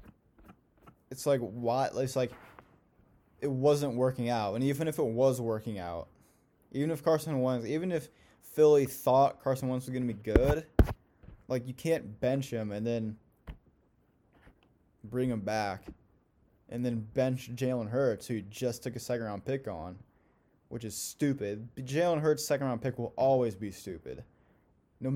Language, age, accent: English, 20-39, American